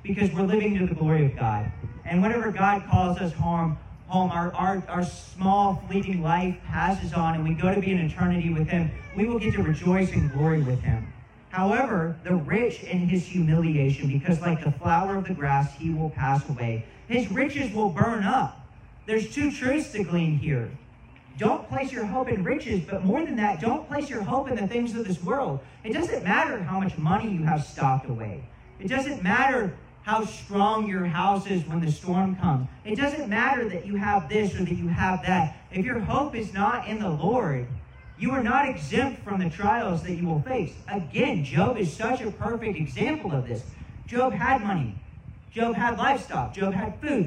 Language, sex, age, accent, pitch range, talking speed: English, male, 40-59, American, 155-220 Hz, 205 wpm